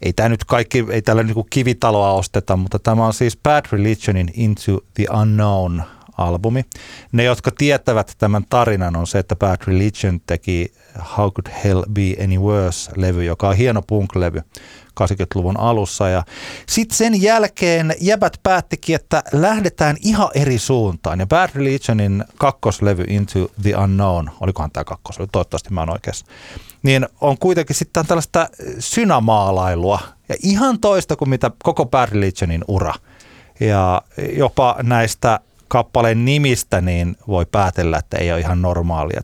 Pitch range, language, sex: 90-120 Hz, Finnish, male